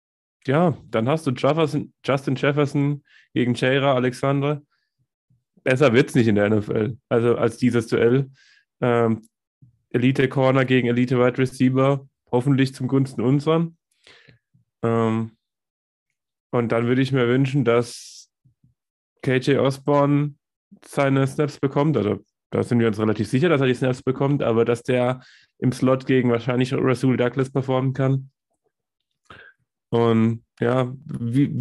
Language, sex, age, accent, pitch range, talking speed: German, male, 20-39, German, 115-140 Hz, 125 wpm